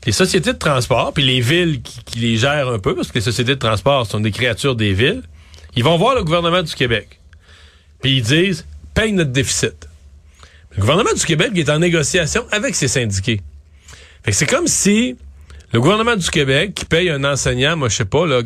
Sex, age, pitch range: male, 40-59, 120-175 Hz